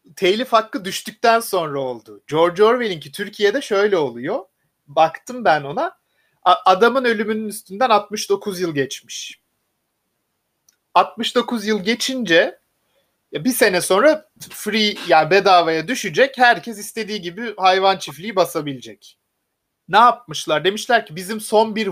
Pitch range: 155-210 Hz